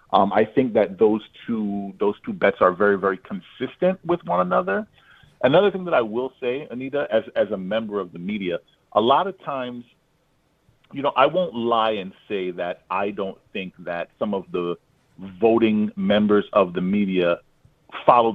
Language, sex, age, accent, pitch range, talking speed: English, male, 40-59, American, 100-135 Hz, 180 wpm